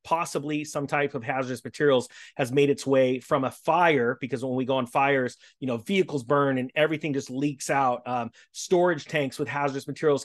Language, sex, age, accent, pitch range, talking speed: English, male, 30-49, American, 130-155 Hz, 200 wpm